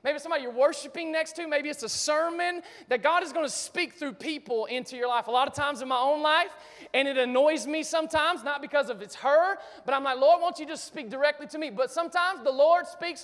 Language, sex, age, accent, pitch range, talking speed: English, male, 20-39, American, 245-295 Hz, 250 wpm